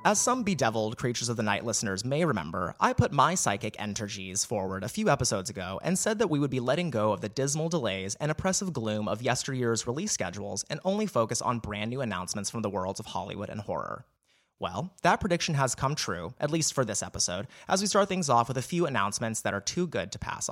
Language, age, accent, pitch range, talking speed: English, 30-49, American, 110-150 Hz, 230 wpm